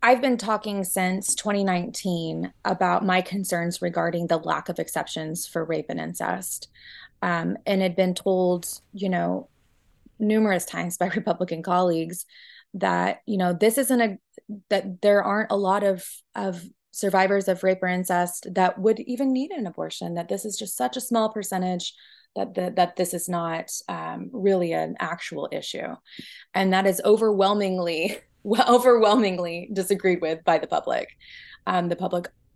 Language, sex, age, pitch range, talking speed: English, female, 20-39, 175-200 Hz, 160 wpm